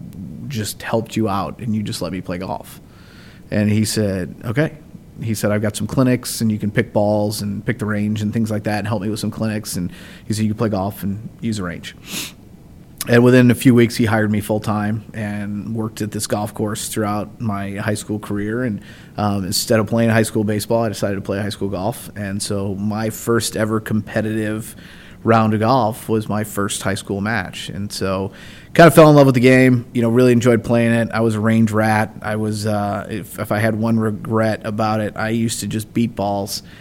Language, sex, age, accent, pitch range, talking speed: English, male, 30-49, American, 105-115 Hz, 230 wpm